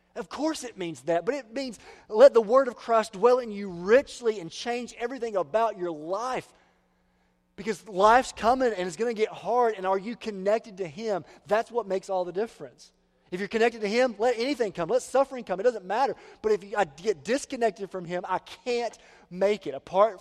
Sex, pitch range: male, 135-215 Hz